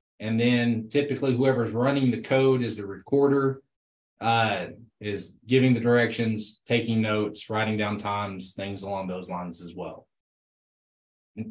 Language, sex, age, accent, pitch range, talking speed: English, male, 20-39, American, 110-140 Hz, 140 wpm